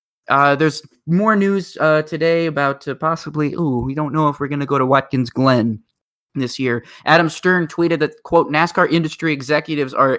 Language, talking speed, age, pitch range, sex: English, 190 wpm, 20-39, 135-170 Hz, male